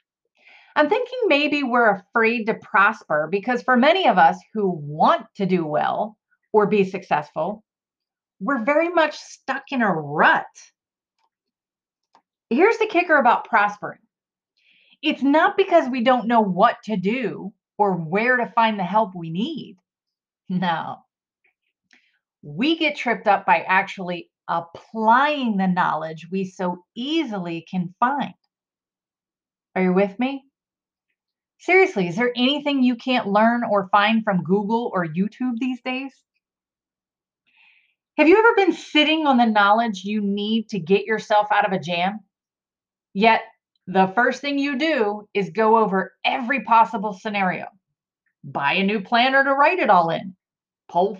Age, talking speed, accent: 30-49, 145 wpm, American